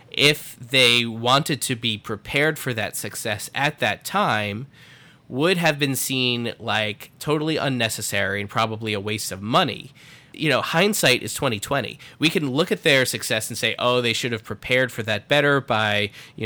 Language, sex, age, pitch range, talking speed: English, male, 20-39, 110-140 Hz, 180 wpm